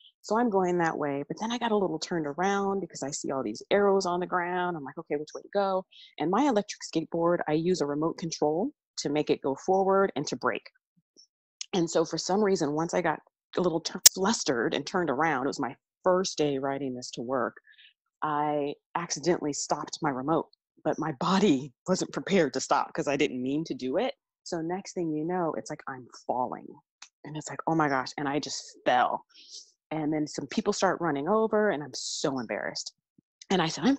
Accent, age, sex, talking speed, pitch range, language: American, 30-49, female, 215 wpm, 145-205 Hz, English